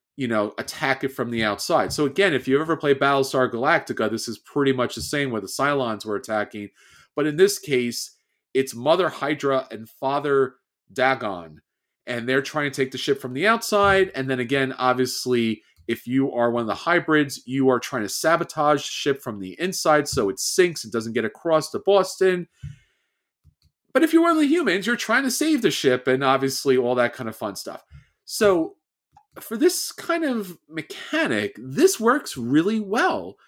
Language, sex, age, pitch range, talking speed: English, male, 30-49, 125-185 Hz, 190 wpm